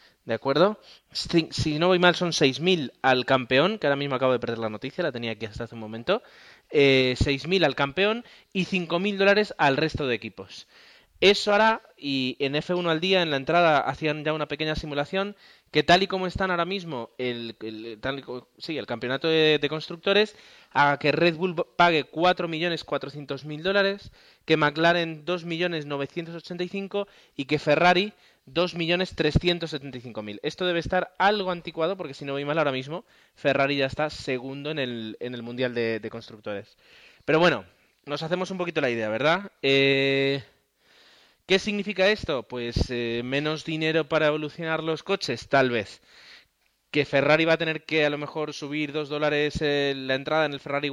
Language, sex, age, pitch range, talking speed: Spanish, male, 20-39, 130-170 Hz, 180 wpm